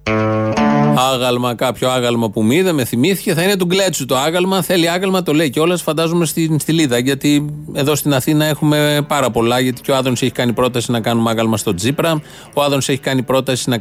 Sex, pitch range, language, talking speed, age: male, 125-175 Hz, Greek, 205 wpm, 30-49